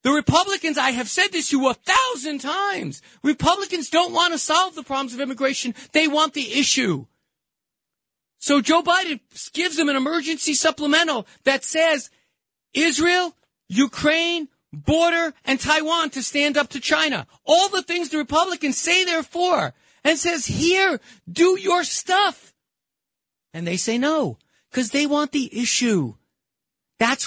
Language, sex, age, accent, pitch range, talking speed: English, male, 40-59, American, 245-315 Hz, 150 wpm